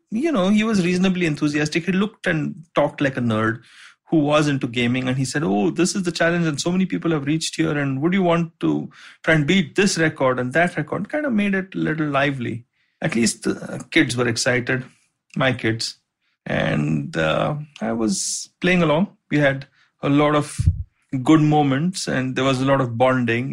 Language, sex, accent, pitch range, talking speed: English, male, Indian, 125-175 Hz, 205 wpm